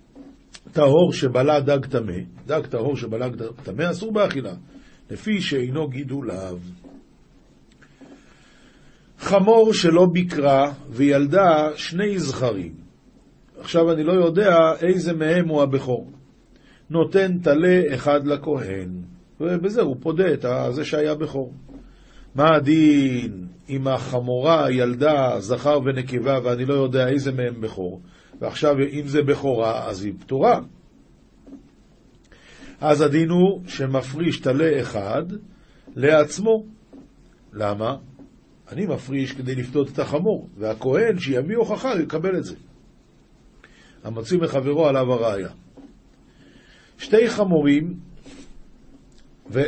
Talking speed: 105 wpm